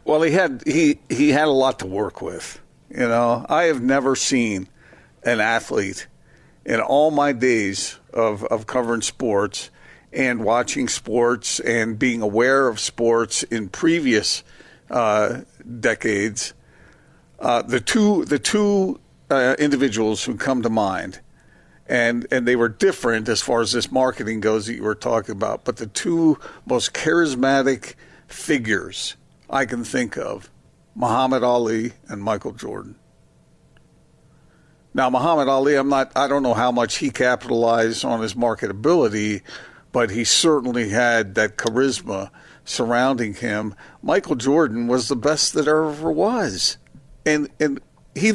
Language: English